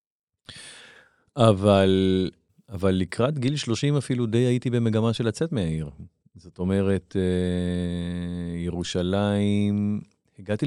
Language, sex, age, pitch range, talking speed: Hebrew, male, 40-59, 85-105 Hz, 90 wpm